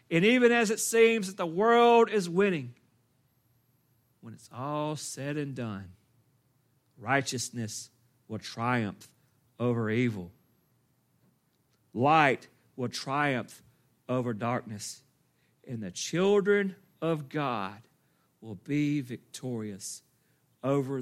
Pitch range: 120-190 Hz